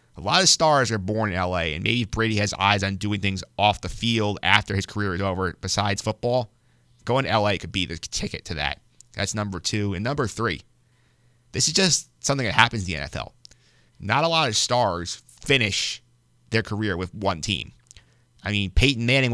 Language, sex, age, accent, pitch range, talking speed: English, male, 30-49, American, 95-120 Hz, 200 wpm